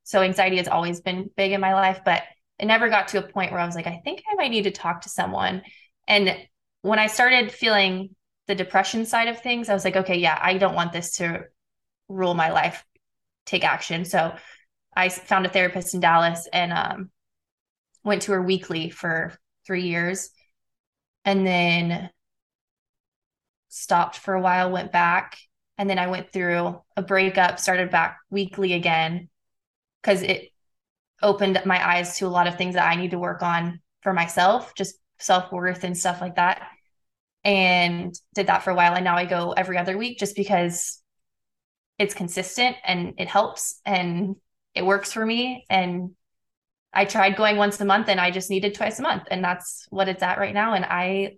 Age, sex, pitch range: 20-39, female, 175-200 Hz